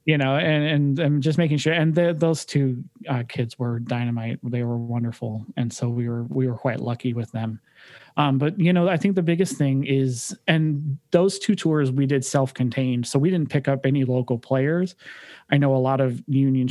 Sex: male